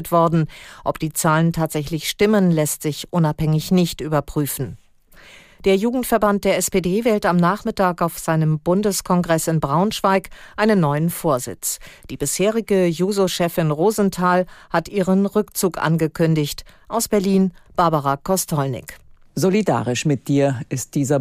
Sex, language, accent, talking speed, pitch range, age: female, German, German, 120 wpm, 145-190 Hz, 50-69